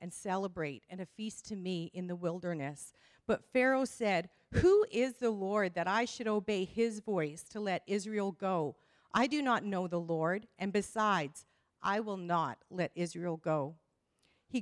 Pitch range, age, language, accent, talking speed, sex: 180-230 Hz, 50-69, English, American, 170 wpm, female